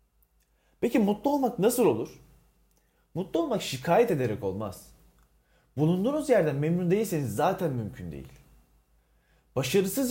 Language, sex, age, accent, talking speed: Turkish, male, 30-49, native, 105 wpm